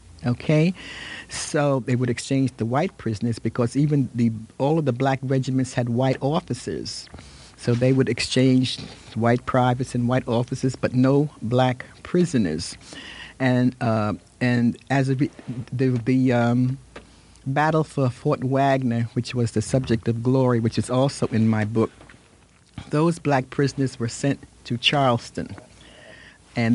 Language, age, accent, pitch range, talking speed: English, 50-69, American, 120-145 Hz, 145 wpm